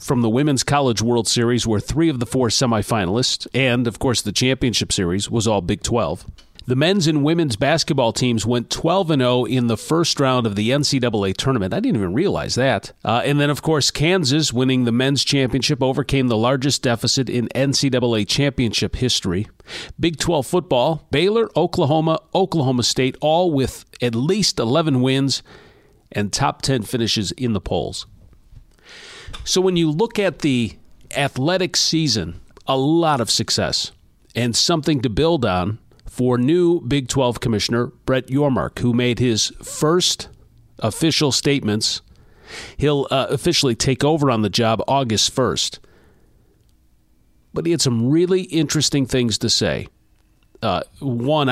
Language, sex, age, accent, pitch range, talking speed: English, male, 40-59, American, 115-145 Hz, 155 wpm